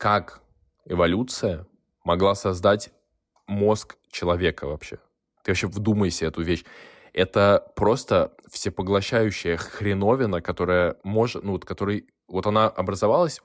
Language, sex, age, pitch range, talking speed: Russian, male, 10-29, 90-105 Hz, 105 wpm